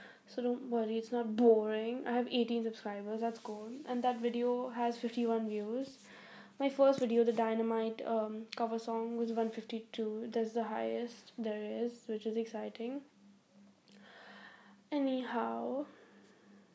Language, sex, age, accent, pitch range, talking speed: English, female, 10-29, Indian, 210-245 Hz, 135 wpm